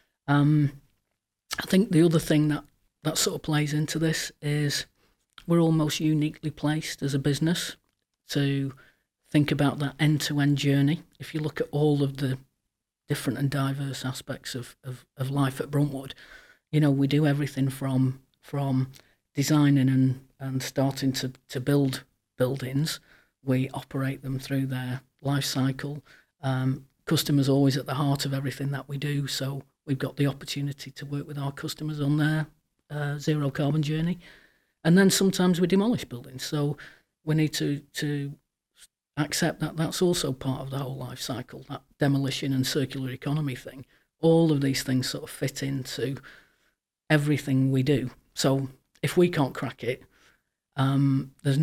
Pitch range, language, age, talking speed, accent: 135-150 Hz, English, 40-59, 160 wpm, British